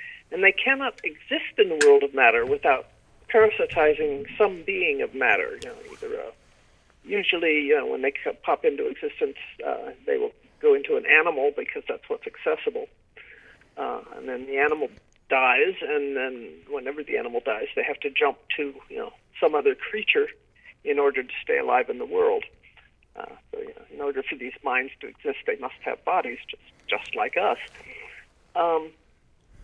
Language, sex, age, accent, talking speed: English, male, 50-69, American, 180 wpm